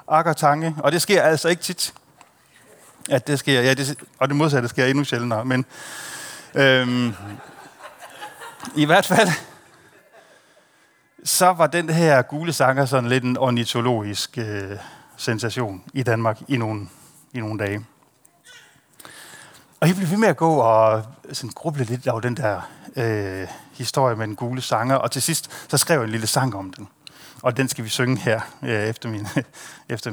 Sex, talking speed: male, 160 wpm